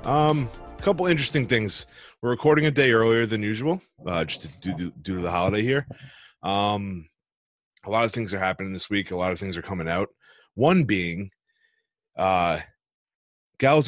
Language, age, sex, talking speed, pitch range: English, 20-39, male, 175 wpm, 90-115 Hz